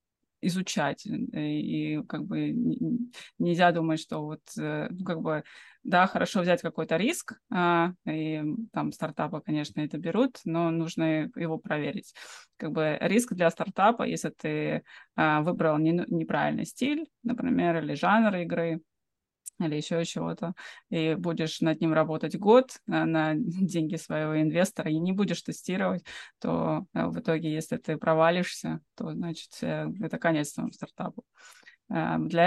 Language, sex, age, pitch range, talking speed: English, female, 20-39, 155-185 Hz, 125 wpm